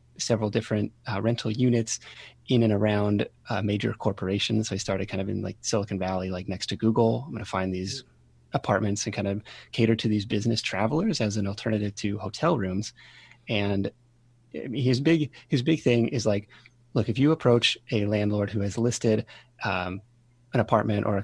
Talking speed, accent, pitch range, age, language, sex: 185 wpm, American, 100-120 Hz, 30-49, English, male